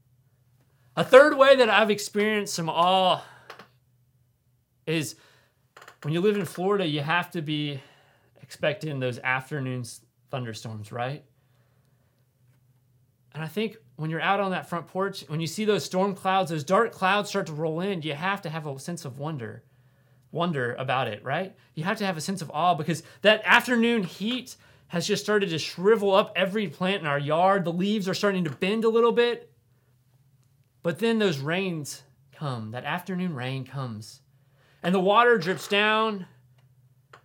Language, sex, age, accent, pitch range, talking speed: English, male, 30-49, American, 130-195 Hz, 170 wpm